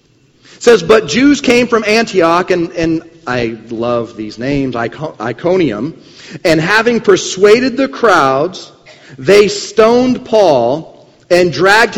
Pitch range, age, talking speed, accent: 175-255 Hz, 40-59, 120 wpm, American